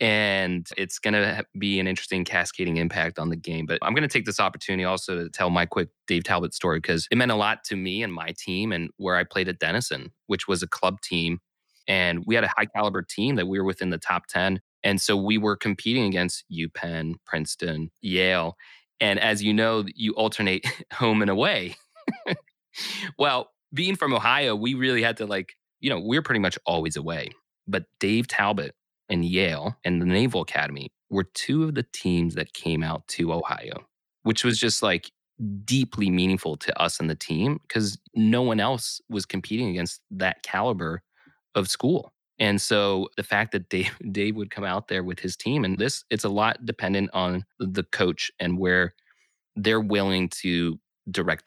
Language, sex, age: English, male, 20-39